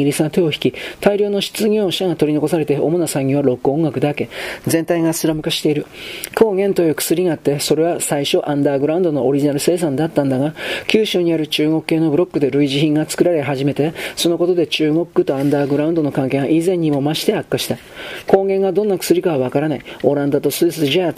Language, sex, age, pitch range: Japanese, male, 40-59, 140-170 Hz